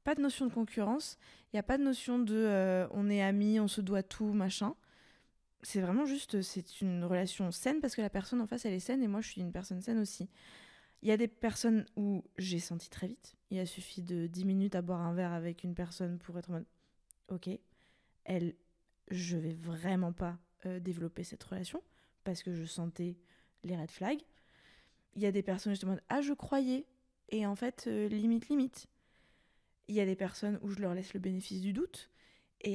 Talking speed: 230 wpm